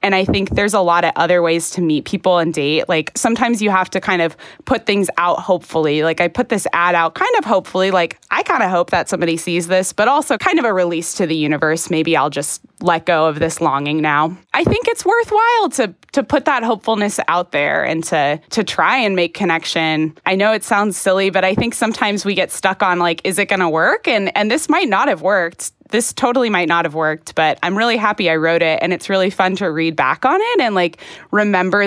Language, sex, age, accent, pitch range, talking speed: English, female, 20-39, American, 165-210 Hz, 245 wpm